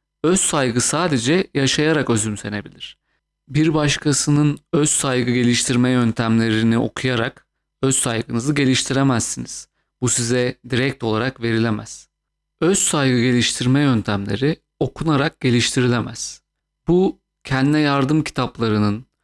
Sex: male